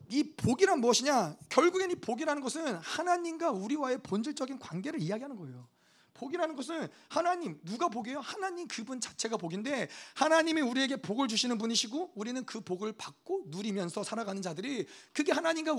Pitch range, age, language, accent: 180-285 Hz, 40-59, Korean, native